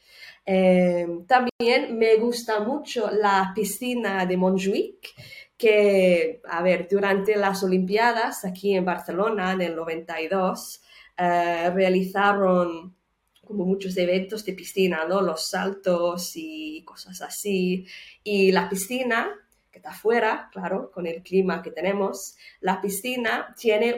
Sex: female